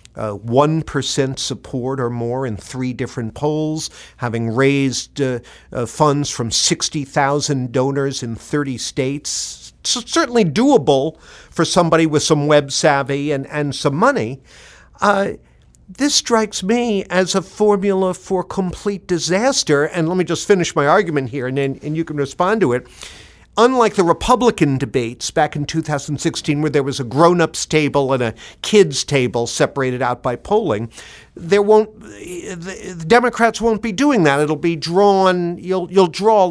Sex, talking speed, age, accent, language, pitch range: male, 155 wpm, 50-69, American, English, 140-205 Hz